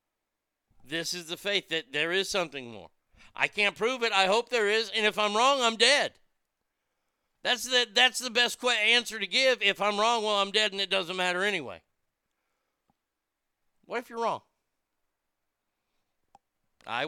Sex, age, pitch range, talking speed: male, 60-79, 150-205 Hz, 160 wpm